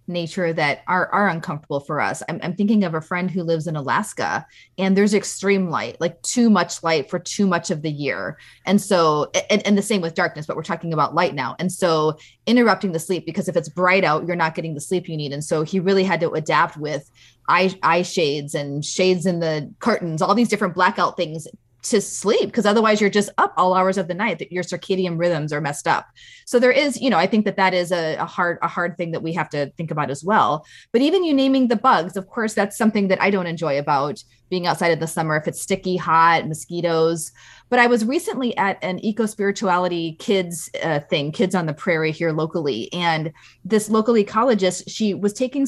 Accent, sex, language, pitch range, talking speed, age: American, female, English, 165-220 Hz, 230 wpm, 20-39